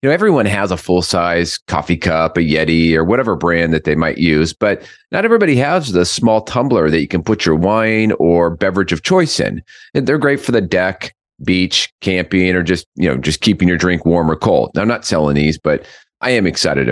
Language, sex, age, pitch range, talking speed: English, male, 40-59, 90-130 Hz, 225 wpm